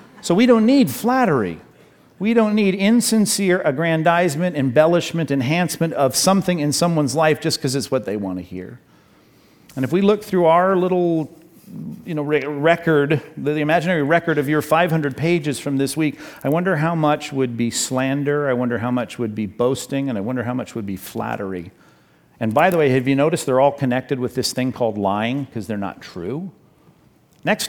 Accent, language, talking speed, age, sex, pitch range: American, English, 190 wpm, 50-69, male, 125-170 Hz